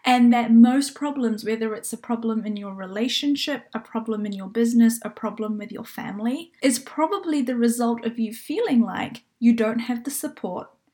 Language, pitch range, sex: English, 220-255 Hz, female